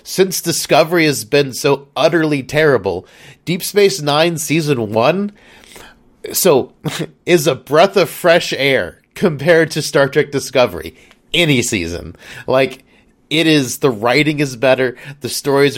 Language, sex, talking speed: English, male, 135 wpm